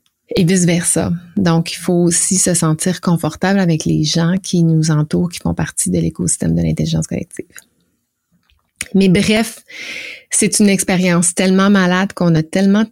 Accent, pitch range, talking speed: Canadian, 160-185 Hz, 160 wpm